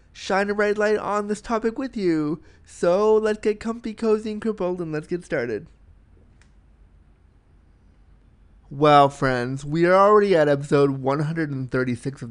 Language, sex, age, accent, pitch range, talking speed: English, male, 20-39, American, 130-185 Hz, 140 wpm